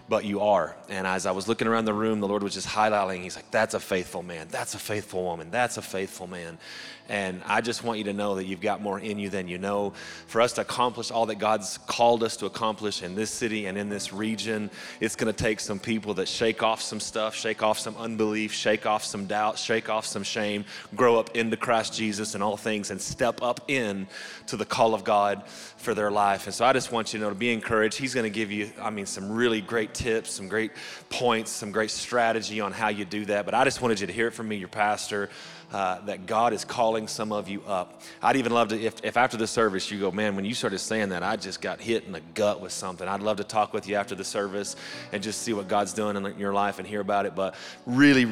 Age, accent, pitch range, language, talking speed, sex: 30-49, American, 100-110 Hz, English, 260 wpm, male